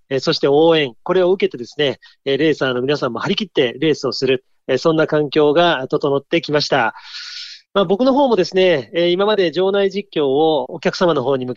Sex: male